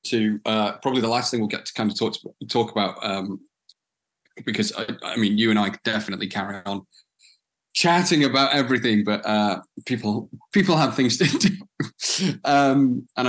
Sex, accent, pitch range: male, British, 105-130 Hz